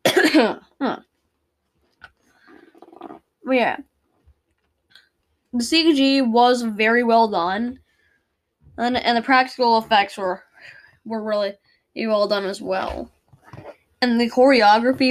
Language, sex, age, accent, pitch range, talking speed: English, female, 10-29, American, 225-305 Hz, 100 wpm